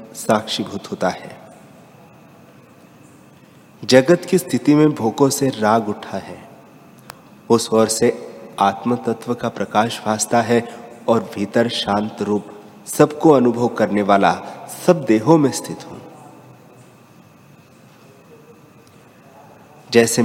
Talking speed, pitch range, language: 100 wpm, 105-125 Hz, Hindi